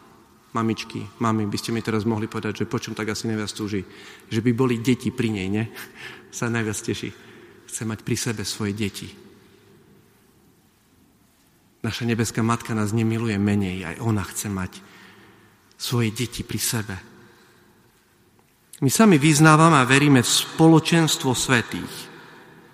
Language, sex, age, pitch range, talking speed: Slovak, male, 40-59, 105-125 Hz, 135 wpm